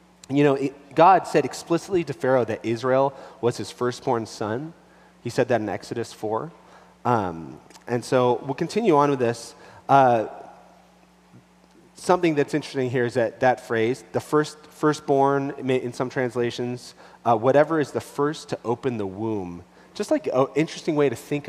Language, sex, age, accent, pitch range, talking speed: English, male, 30-49, American, 110-140 Hz, 170 wpm